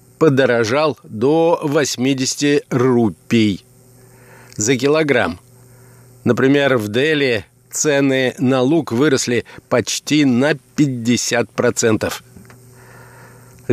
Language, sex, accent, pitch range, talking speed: Russian, male, native, 120-145 Hz, 70 wpm